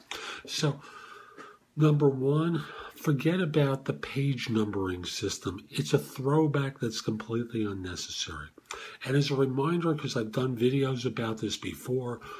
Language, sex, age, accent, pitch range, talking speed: English, male, 50-69, American, 110-140 Hz, 125 wpm